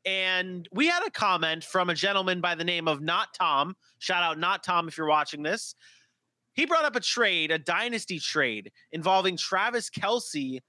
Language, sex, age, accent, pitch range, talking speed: English, male, 30-49, American, 165-225 Hz, 185 wpm